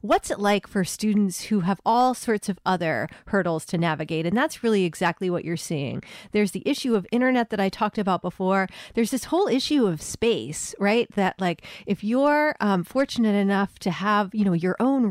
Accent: American